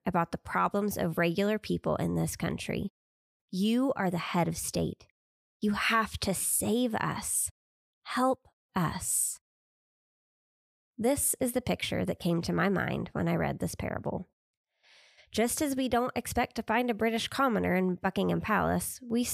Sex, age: female, 20-39